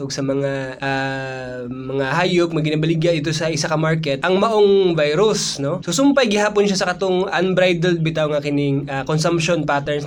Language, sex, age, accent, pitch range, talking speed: Filipino, male, 20-39, native, 145-195 Hz, 175 wpm